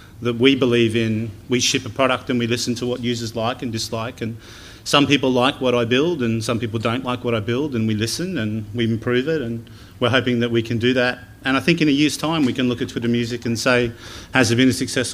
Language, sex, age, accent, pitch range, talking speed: English, male, 30-49, Australian, 115-130 Hz, 265 wpm